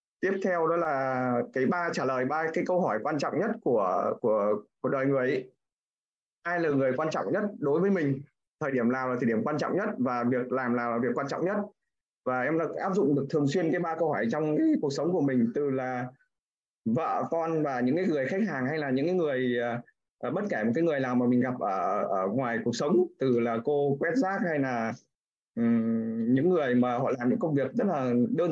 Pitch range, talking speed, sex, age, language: 125-175 Hz, 240 wpm, male, 20-39, Vietnamese